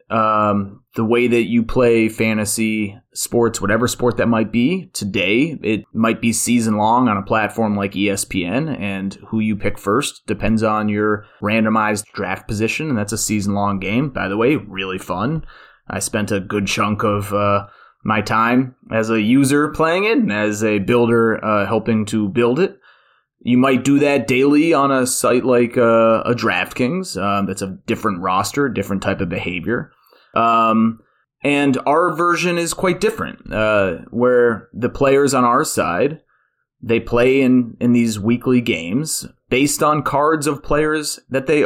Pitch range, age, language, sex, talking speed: 105-130 Hz, 20-39, English, male, 170 wpm